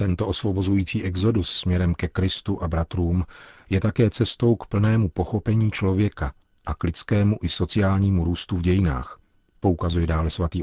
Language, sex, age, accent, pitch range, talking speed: Czech, male, 40-59, native, 85-100 Hz, 145 wpm